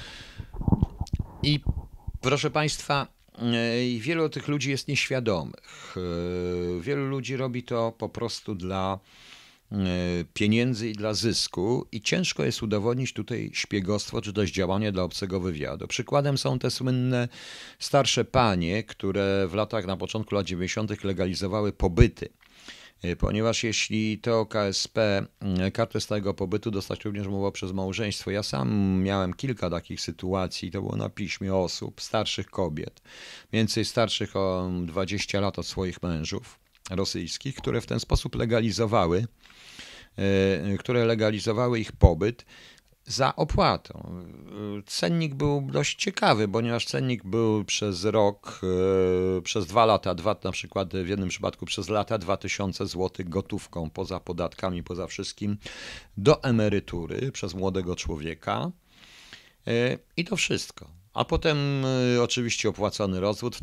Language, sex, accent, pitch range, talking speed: Polish, male, native, 95-115 Hz, 125 wpm